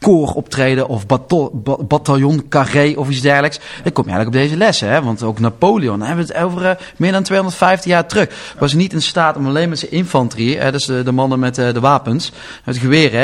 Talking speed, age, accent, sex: 220 wpm, 30-49, Dutch, male